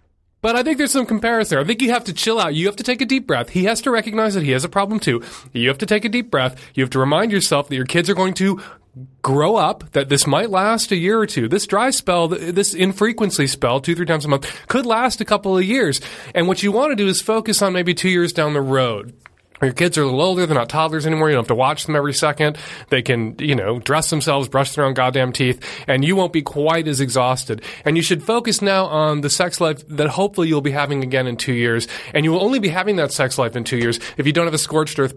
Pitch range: 130-180 Hz